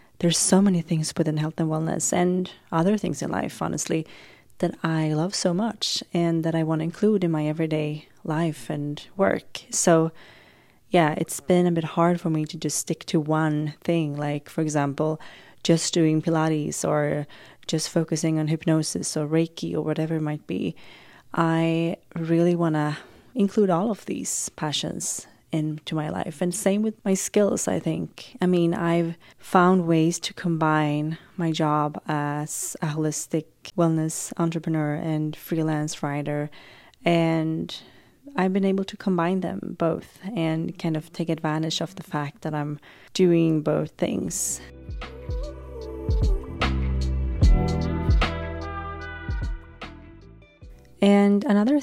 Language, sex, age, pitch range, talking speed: English, female, 20-39, 150-175 Hz, 140 wpm